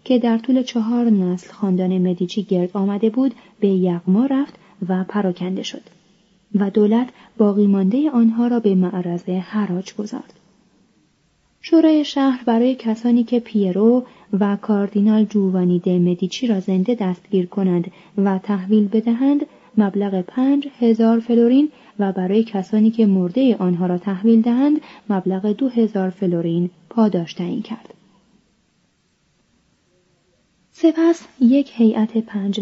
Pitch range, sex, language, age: 195-240 Hz, female, Persian, 30-49